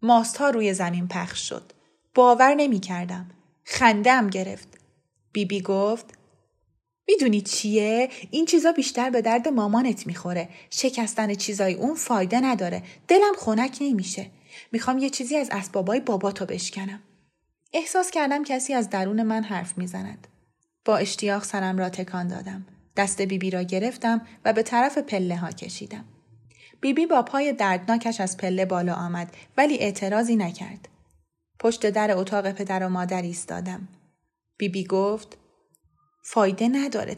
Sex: female